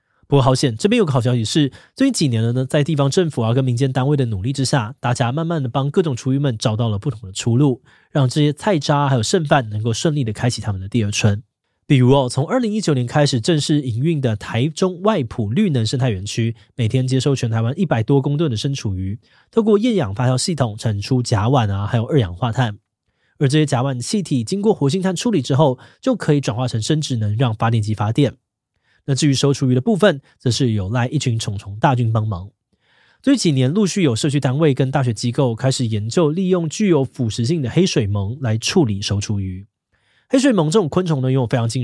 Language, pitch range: Chinese, 115-150 Hz